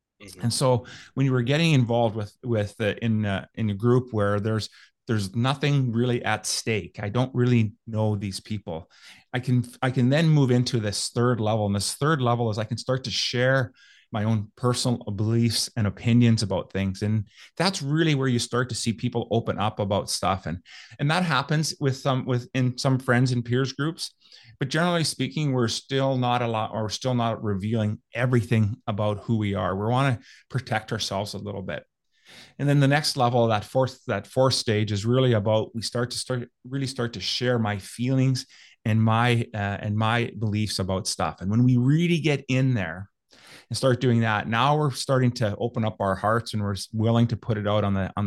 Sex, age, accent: male, 30-49, American